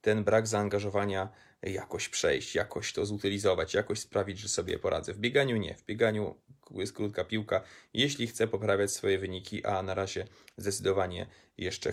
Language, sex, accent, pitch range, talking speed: Polish, male, native, 95-115 Hz, 155 wpm